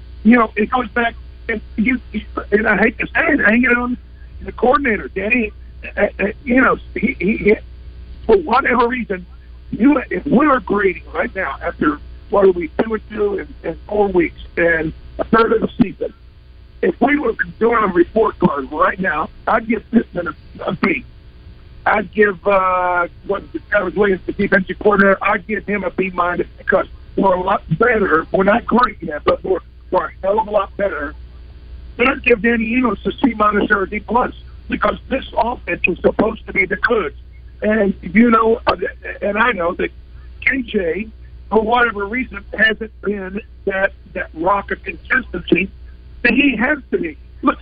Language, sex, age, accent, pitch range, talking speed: English, male, 50-69, American, 190-245 Hz, 180 wpm